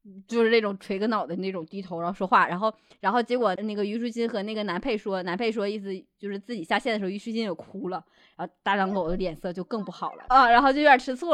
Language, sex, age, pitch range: Chinese, female, 20-39, 200-285 Hz